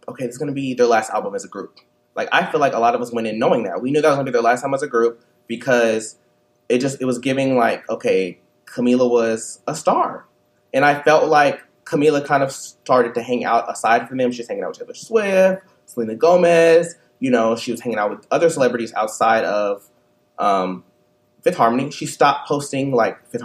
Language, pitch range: English, 120-170 Hz